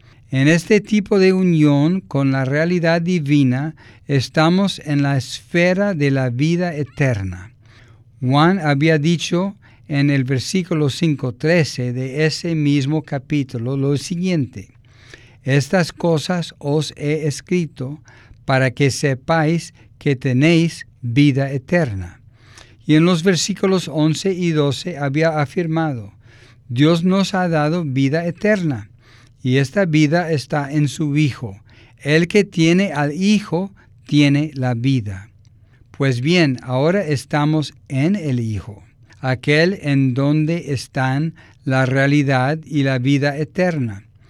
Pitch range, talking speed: 125-165 Hz, 120 wpm